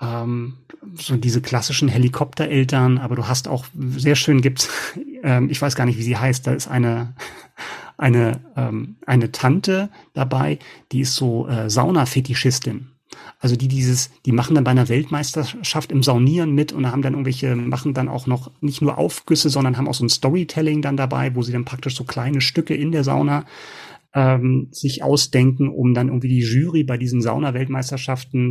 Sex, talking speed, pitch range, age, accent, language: male, 180 wpm, 130-150 Hz, 30-49, German, German